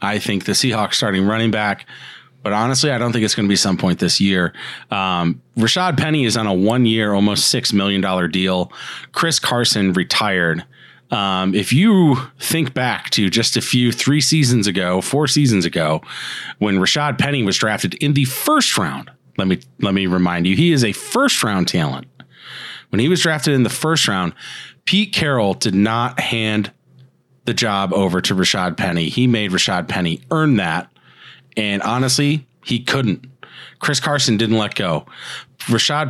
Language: English